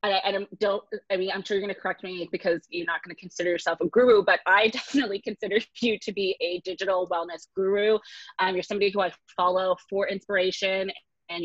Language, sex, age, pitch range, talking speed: English, female, 20-39, 180-215 Hz, 215 wpm